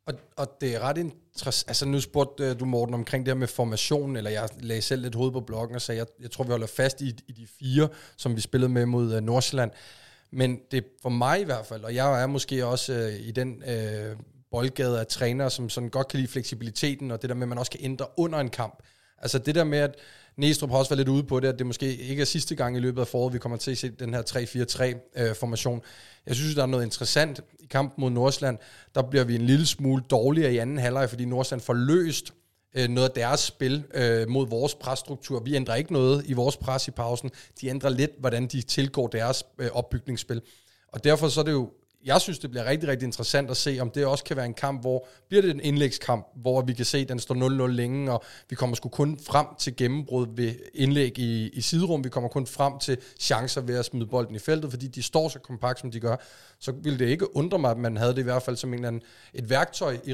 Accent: native